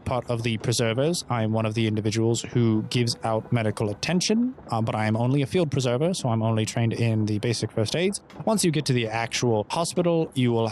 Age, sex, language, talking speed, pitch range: 20-39, male, English, 230 wpm, 110-125 Hz